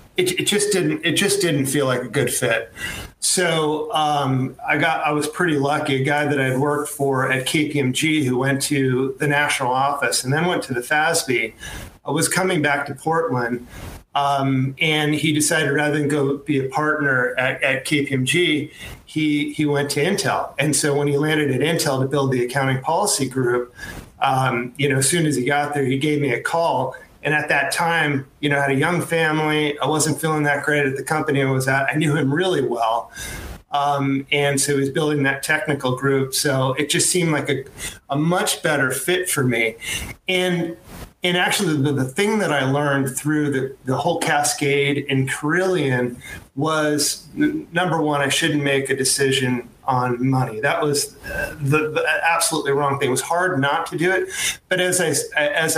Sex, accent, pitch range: male, American, 135-155 Hz